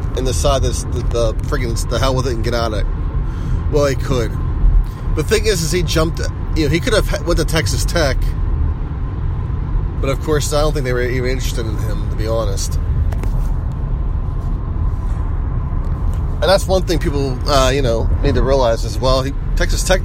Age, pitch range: 30-49, 85-130 Hz